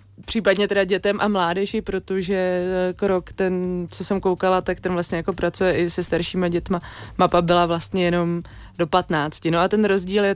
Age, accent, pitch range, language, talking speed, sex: 20-39, native, 185-215 Hz, Czech, 180 wpm, female